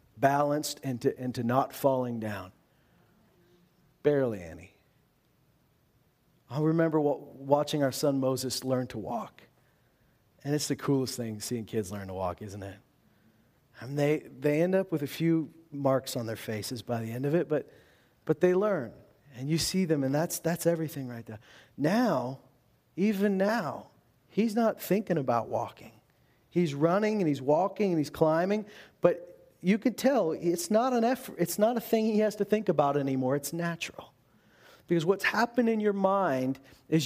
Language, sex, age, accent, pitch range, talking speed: English, male, 40-59, American, 130-190 Hz, 170 wpm